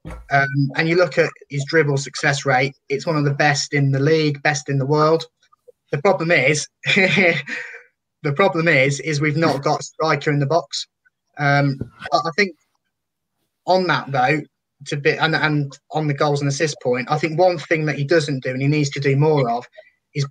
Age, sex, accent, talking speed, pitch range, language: 20-39, male, British, 200 wpm, 140-160 Hz, English